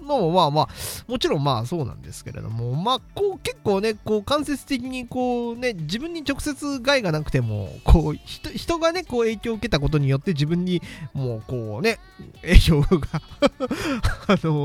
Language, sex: Japanese, male